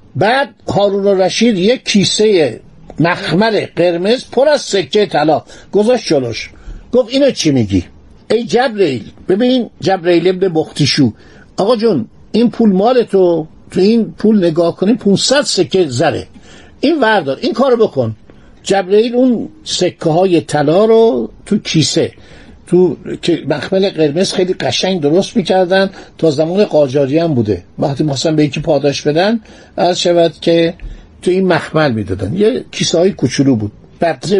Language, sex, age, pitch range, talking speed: Persian, male, 60-79, 145-215 Hz, 140 wpm